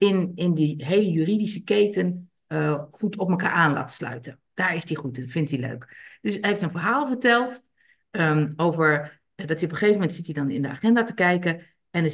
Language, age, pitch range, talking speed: Dutch, 50-69, 160-220 Hz, 220 wpm